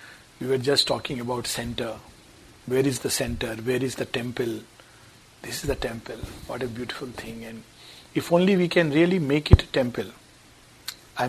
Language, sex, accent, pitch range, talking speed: English, male, Indian, 130-165 Hz, 175 wpm